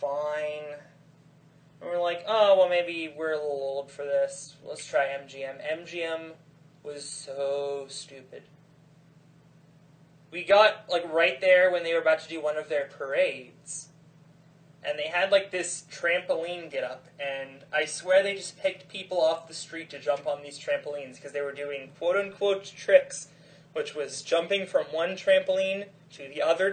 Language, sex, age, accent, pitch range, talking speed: English, male, 20-39, American, 150-185 Hz, 170 wpm